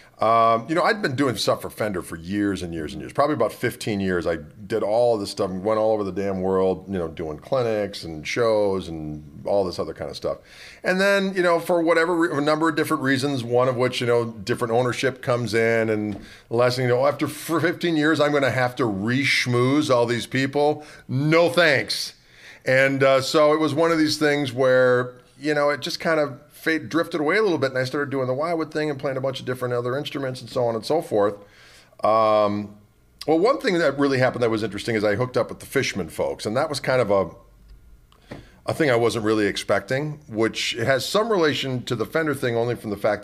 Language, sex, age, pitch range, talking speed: English, male, 40-59, 100-145 Hz, 235 wpm